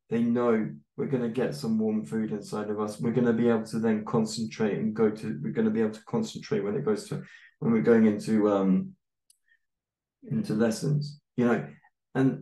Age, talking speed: 20-39, 215 wpm